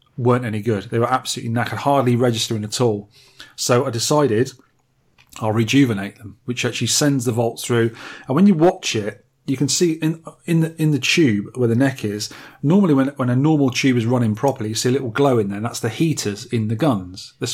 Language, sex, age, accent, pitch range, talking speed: English, male, 30-49, British, 115-140 Hz, 220 wpm